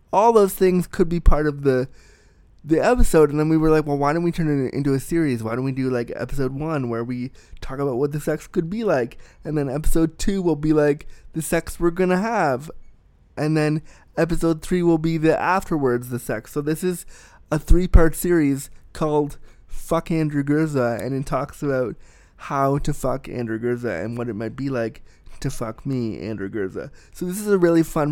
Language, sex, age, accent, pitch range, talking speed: English, male, 20-39, American, 135-165 Hz, 215 wpm